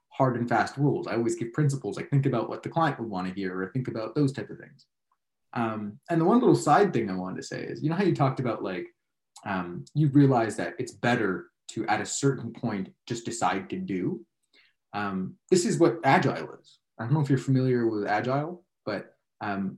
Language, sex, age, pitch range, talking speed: English, male, 20-39, 115-140 Hz, 230 wpm